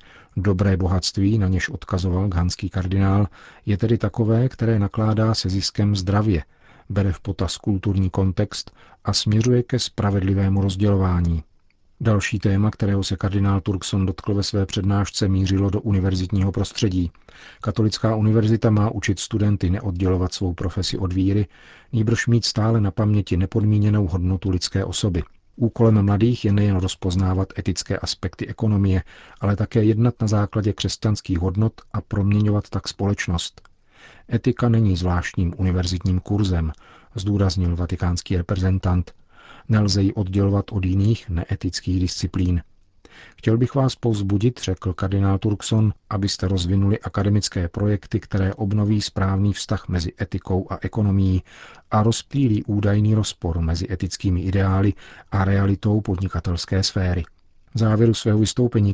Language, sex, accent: Czech, male, native